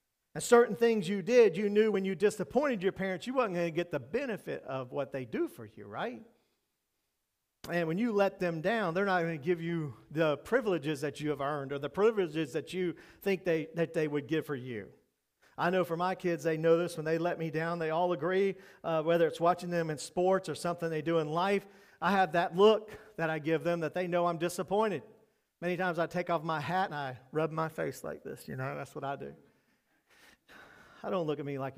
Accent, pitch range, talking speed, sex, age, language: American, 160-205 Hz, 235 wpm, male, 40-59, English